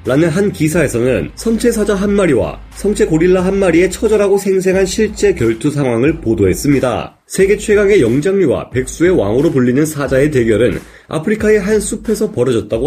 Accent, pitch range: native, 135-195 Hz